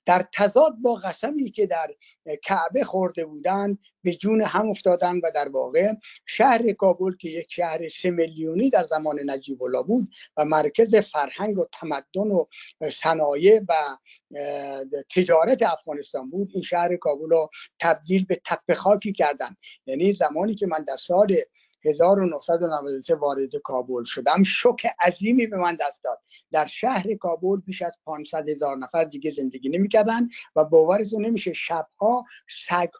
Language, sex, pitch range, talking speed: Persian, male, 165-225 Hz, 150 wpm